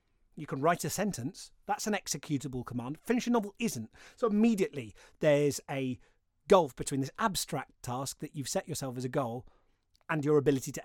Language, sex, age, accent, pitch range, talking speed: English, male, 30-49, British, 130-185 Hz, 185 wpm